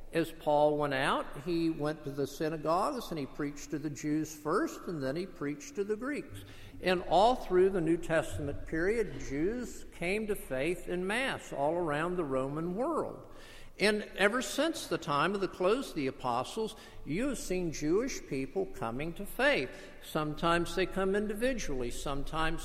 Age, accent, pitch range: 50-69, American, 155-200 Hz